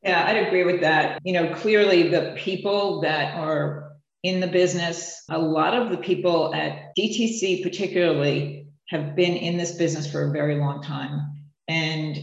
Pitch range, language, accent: 150-170 Hz, English, American